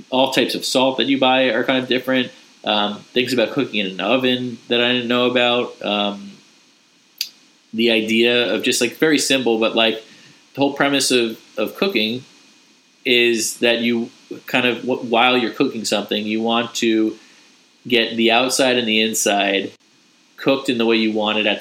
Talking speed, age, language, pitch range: 180 wpm, 20-39, English, 105-125 Hz